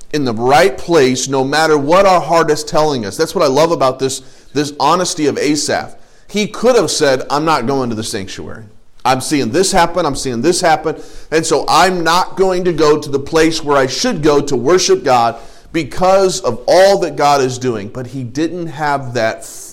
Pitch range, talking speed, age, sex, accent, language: 130-165 Hz, 210 wpm, 40-59, male, American, English